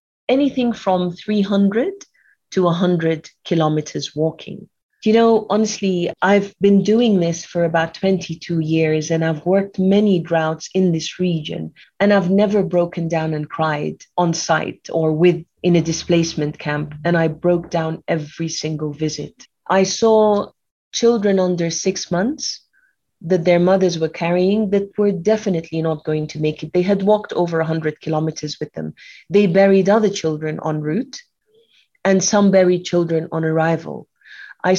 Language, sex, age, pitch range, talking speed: English, female, 30-49, 160-205 Hz, 150 wpm